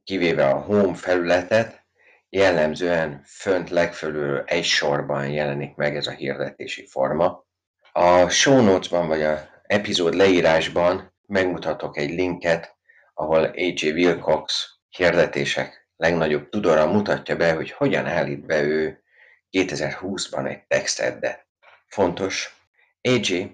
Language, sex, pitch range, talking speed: Hungarian, male, 75-95 Hz, 105 wpm